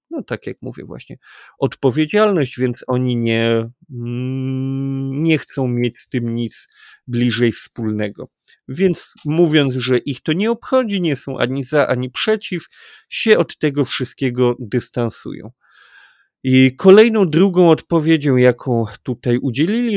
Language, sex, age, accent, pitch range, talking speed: Polish, male, 40-59, native, 125-155 Hz, 125 wpm